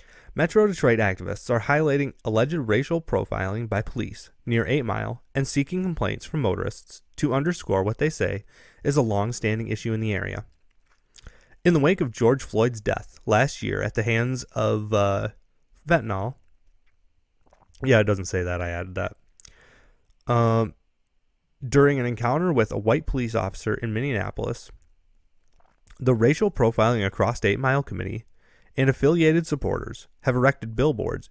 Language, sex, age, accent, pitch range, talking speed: English, male, 30-49, American, 100-135 Hz, 150 wpm